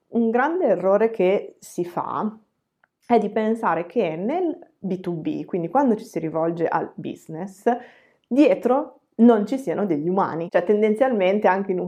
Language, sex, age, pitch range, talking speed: Italian, female, 20-39, 175-220 Hz, 140 wpm